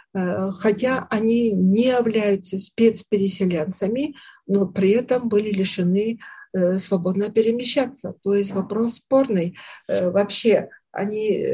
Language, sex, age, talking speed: Russian, female, 50-69, 95 wpm